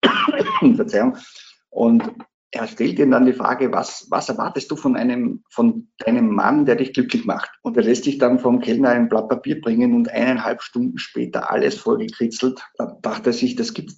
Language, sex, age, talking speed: German, male, 50-69, 195 wpm